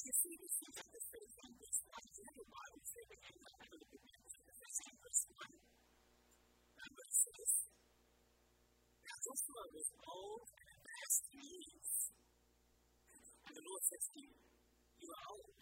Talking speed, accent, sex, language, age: 70 wpm, American, female, English, 50-69